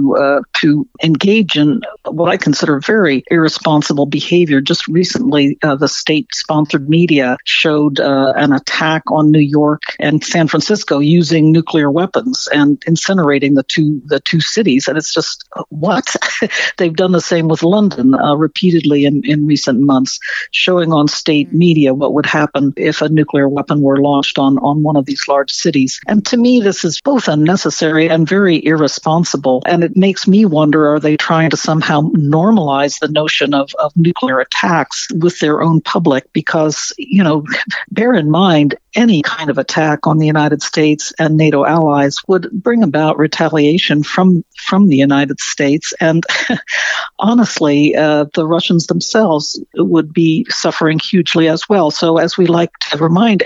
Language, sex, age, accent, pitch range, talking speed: English, female, 60-79, American, 150-175 Hz, 165 wpm